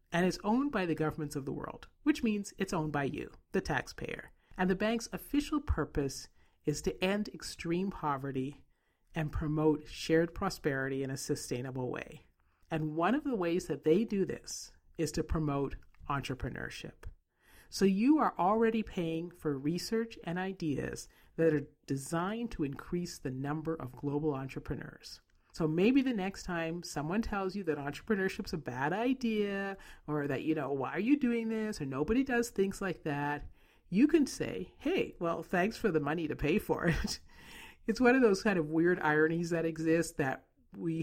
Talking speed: 175 wpm